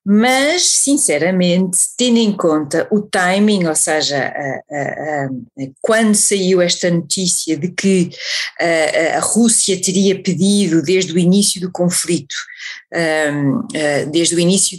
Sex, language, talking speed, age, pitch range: female, Portuguese, 115 wpm, 40-59, 160-195 Hz